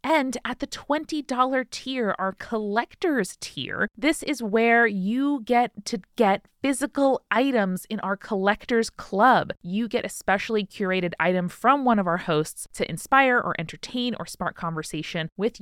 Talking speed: 155 wpm